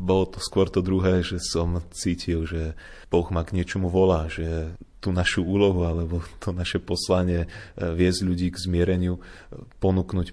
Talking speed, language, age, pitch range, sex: 155 wpm, Slovak, 30-49, 85-95 Hz, male